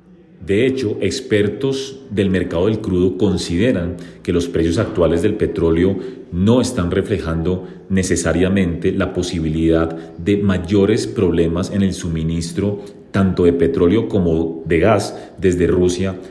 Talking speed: 125 wpm